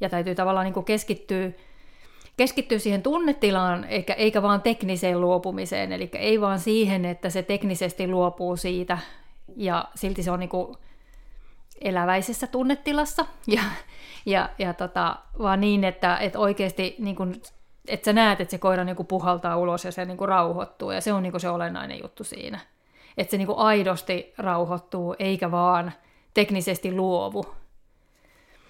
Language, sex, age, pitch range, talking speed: Finnish, female, 30-49, 185-210 Hz, 155 wpm